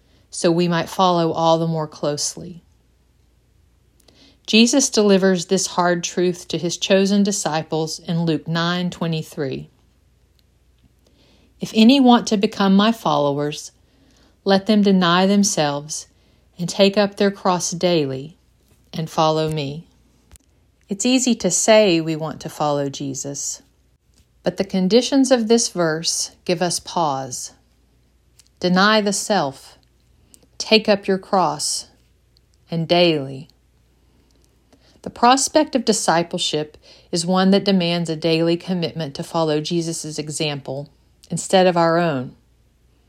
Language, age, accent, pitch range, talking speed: English, 40-59, American, 155-195 Hz, 125 wpm